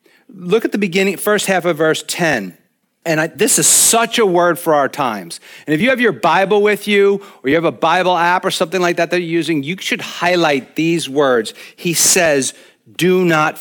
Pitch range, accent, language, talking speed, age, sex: 165-215 Hz, American, English, 215 wpm, 50-69, male